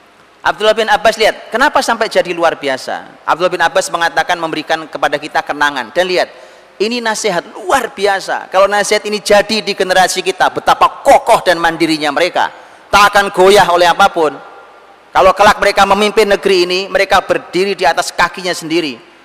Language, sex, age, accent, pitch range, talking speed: Indonesian, male, 30-49, native, 140-185 Hz, 160 wpm